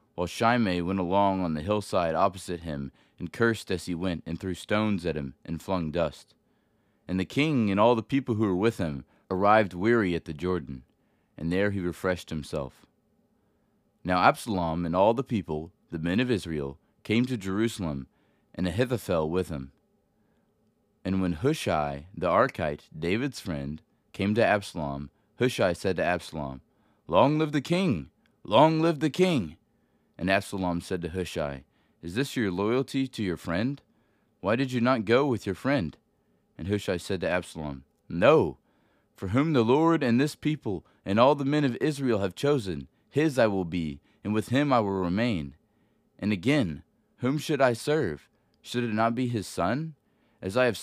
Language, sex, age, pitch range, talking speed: English, male, 30-49, 85-120 Hz, 175 wpm